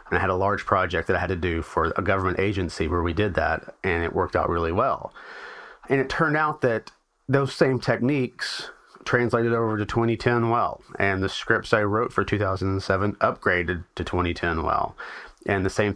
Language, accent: English, American